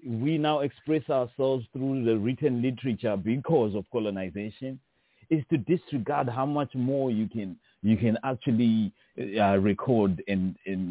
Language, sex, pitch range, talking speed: English, male, 110-135 Hz, 145 wpm